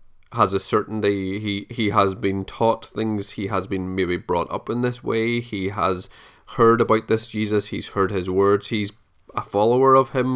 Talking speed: 190 wpm